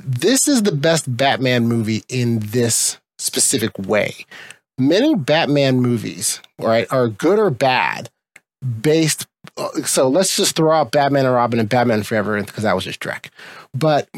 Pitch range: 130-160 Hz